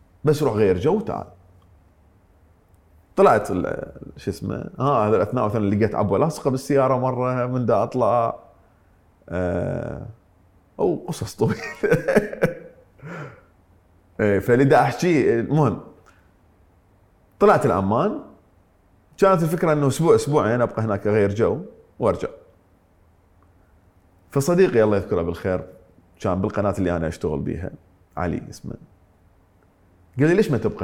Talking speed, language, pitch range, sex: 110 wpm, English, 90-115 Hz, male